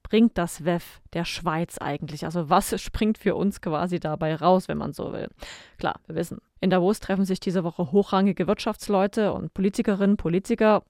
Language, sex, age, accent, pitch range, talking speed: German, female, 20-39, German, 175-210 Hz, 175 wpm